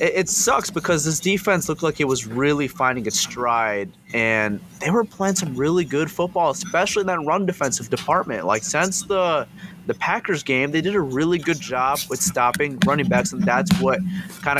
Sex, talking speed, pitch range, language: male, 195 wpm, 105-150 Hz, English